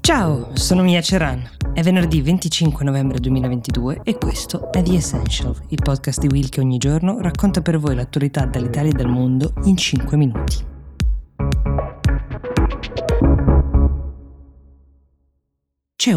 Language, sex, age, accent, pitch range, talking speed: Italian, female, 20-39, native, 125-165 Hz, 125 wpm